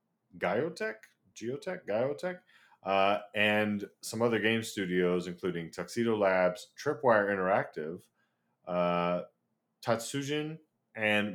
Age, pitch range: 30-49, 90-110 Hz